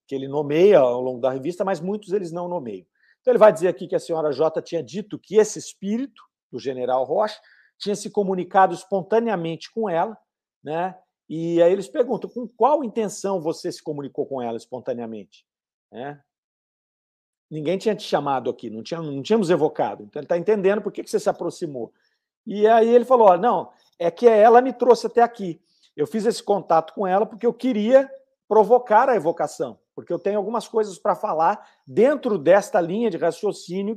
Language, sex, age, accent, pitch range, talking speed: Portuguese, male, 50-69, Brazilian, 155-220 Hz, 180 wpm